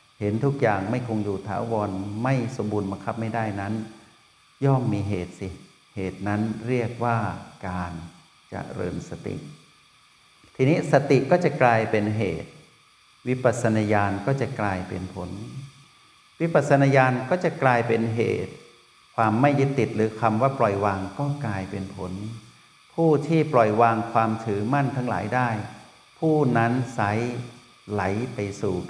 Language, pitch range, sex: Thai, 100-130 Hz, male